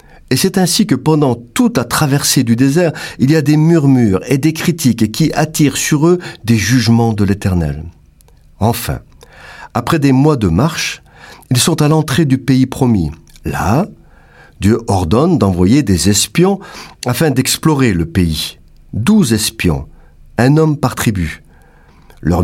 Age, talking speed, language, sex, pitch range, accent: 50-69, 150 wpm, French, male, 90-145 Hz, French